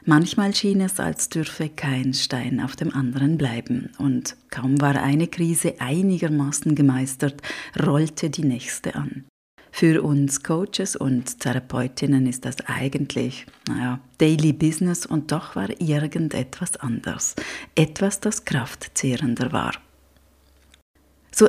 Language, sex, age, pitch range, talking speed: German, female, 30-49, 135-165 Hz, 120 wpm